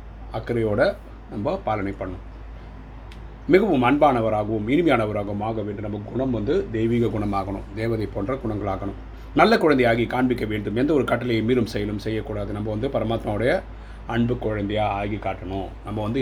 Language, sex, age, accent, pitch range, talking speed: Tamil, male, 30-49, native, 105-120 Hz, 130 wpm